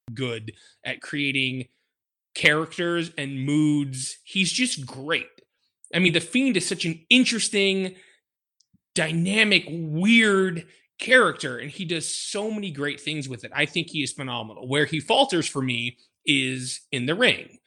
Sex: male